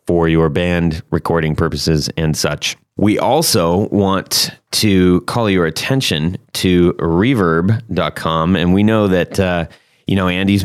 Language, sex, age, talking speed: English, male, 30-49, 135 wpm